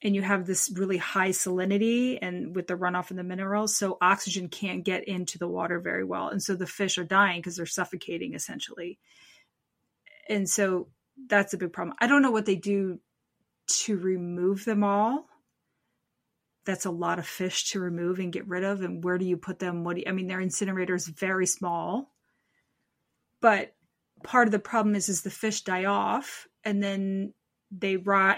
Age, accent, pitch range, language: 30-49, American, 180-205 Hz, English